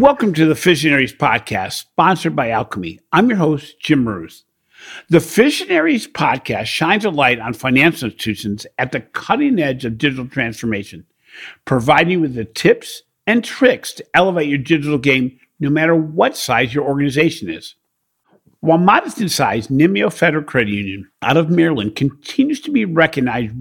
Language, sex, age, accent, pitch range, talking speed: English, male, 50-69, American, 120-175 Hz, 160 wpm